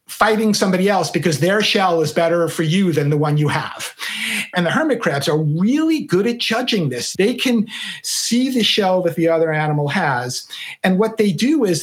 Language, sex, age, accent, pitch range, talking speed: English, male, 50-69, American, 165-210 Hz, 205 wpm